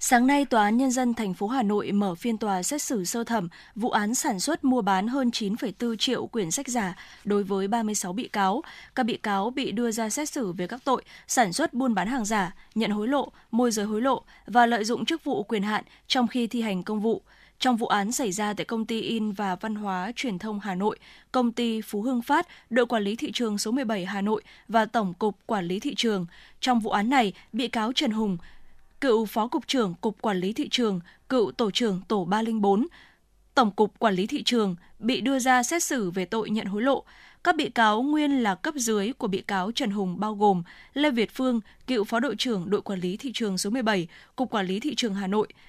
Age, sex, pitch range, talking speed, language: 20-39, female, 205-255 Hz, 240 wpm, Vietnamese